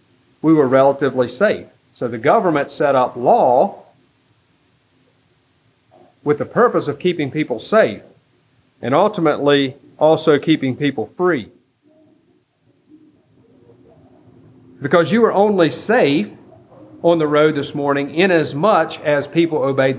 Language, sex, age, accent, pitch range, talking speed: English, male, 40-59, American, 125-155 Hz, 115 wpm